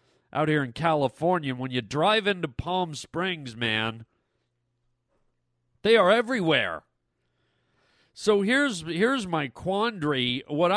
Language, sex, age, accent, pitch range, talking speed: English, male, 40-59, American, 145-200 Hz, 110 wpm